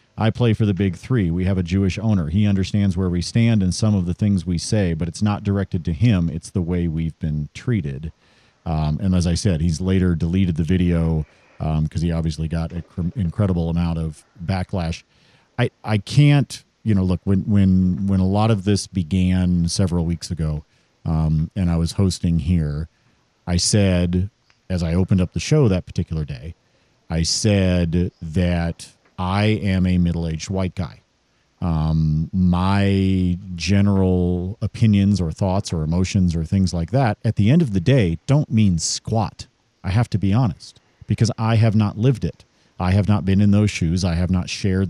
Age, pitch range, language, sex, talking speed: 40-59, 85-105 Hz, English, male, 185 wpm